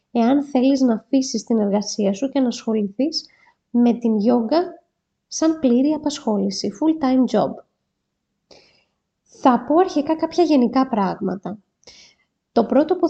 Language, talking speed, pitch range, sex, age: Greek, 125 wpm, 220-275 Hz, female, 20-39